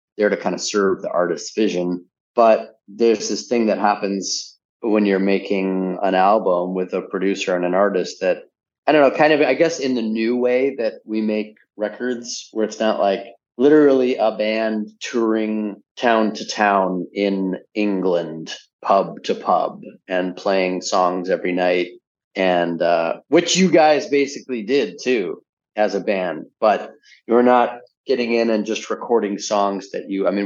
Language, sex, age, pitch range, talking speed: English, male, 30-49, 95-120 Hz, 170 wpm